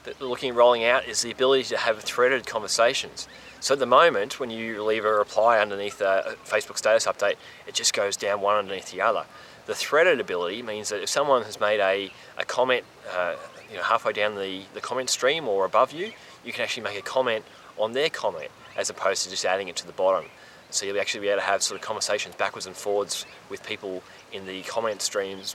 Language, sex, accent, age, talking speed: English, male, Australian, 20-39, 220 wpm